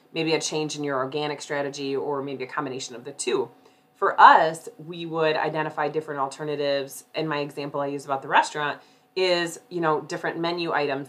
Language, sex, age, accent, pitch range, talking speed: English, female, 30-49, American, 150-185 Hz, 190 wpm